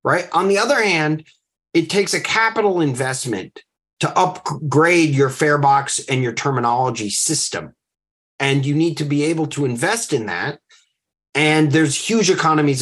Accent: American